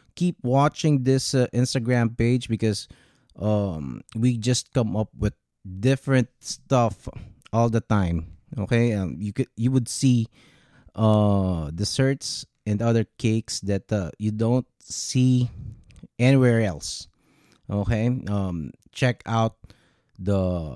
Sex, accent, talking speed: male, native, 120 wpm